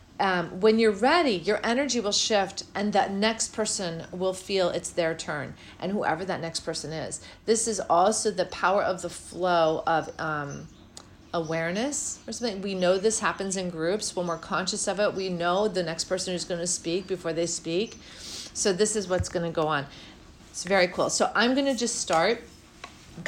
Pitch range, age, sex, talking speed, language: 175-230 Hz, 40-59, female, 200 wpm, English